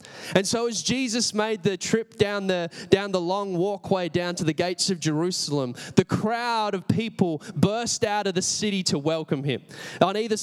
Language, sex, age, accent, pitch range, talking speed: English, male, 20-39, Australian, 145-190 Hz, 190 wpm